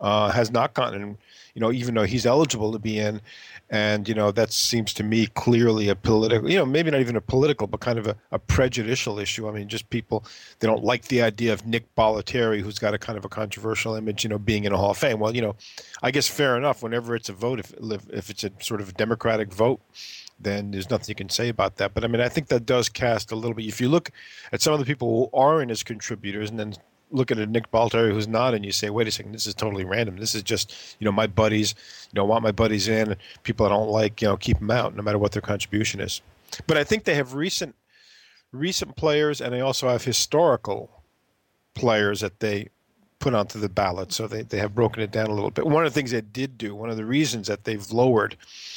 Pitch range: 105-120 Hz